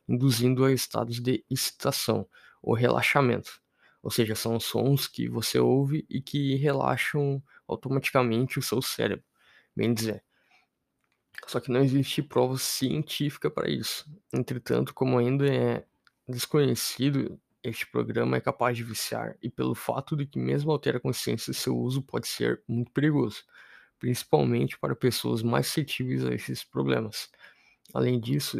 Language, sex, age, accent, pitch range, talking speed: Portuguese, male, 20-39, Brazilian, 115-135 Hz, 145 wpm